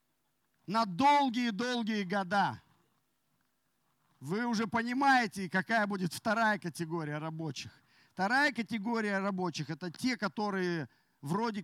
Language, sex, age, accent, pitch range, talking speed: Russian, male, 40-59, native, 165-230 Hz, 95 wpm